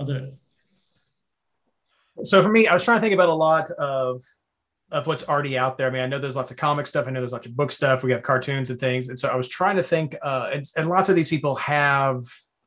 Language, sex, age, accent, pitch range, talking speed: English, male, 30-49, American, 130-145 Hz, 250 wpm